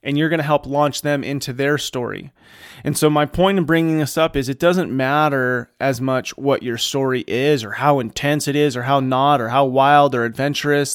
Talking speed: 225 wpm